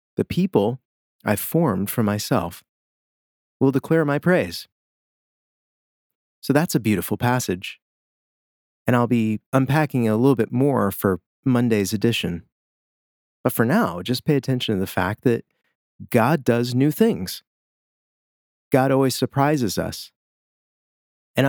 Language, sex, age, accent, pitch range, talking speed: English, male, 30-49, American, 100-130 Hz, 125 wpm